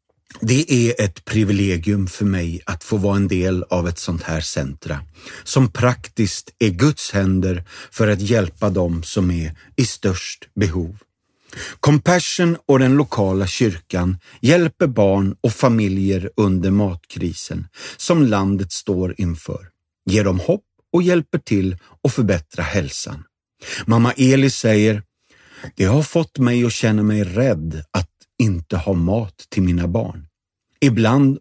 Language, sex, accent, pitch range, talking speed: Swedish, male, native, 90-120 Hz, 140 wpm